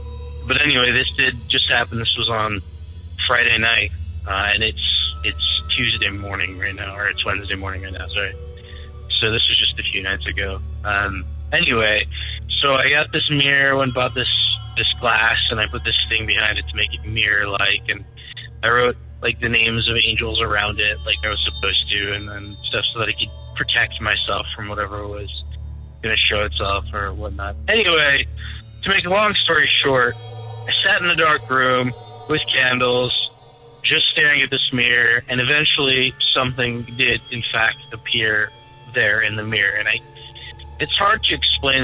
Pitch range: 80-120 Hz